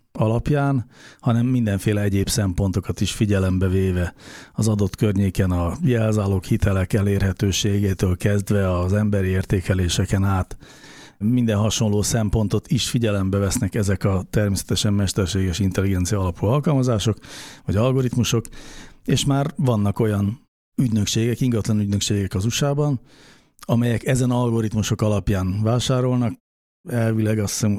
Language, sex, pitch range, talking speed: Hungarian, male, 100-120 Hz, 110 wpm